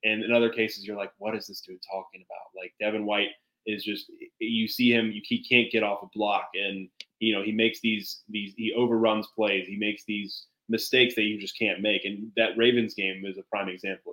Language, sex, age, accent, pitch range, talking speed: English, male, 20-39, American, 100-115 Hz, 225 wpm